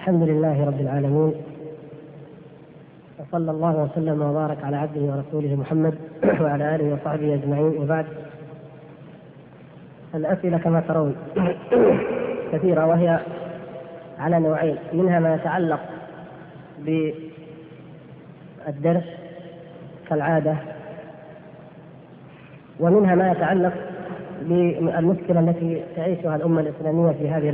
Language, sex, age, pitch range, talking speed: Arabic, female, 30-49, 155-175 Hz, 85 wpm